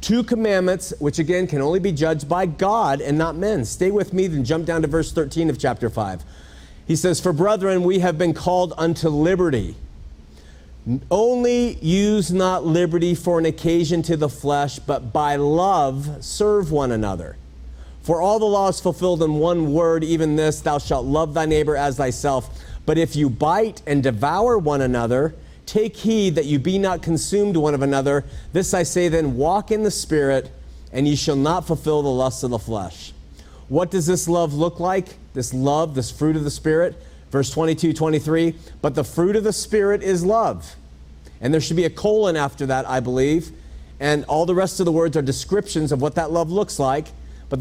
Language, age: English, 40-59